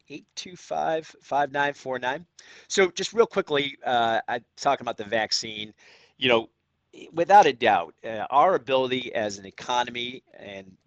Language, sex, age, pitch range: English, male, 50-69, 105-135 Hz